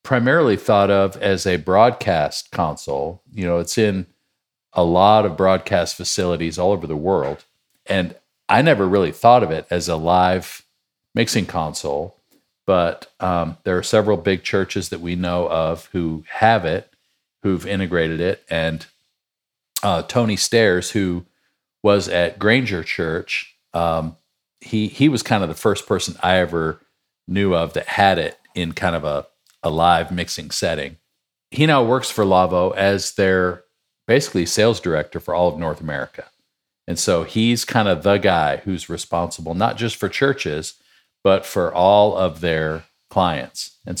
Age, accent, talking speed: 50-69, American, 160 wpm